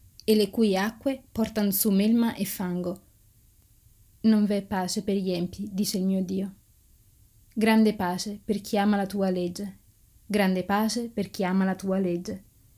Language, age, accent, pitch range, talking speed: Italian, 20-39, native, 180-210 Hz, 165 wpm